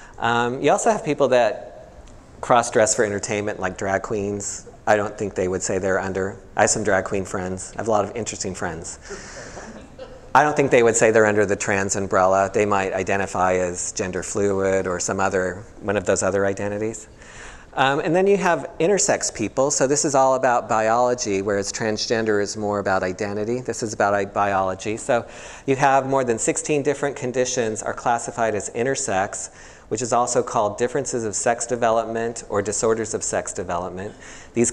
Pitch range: 95-115 Hz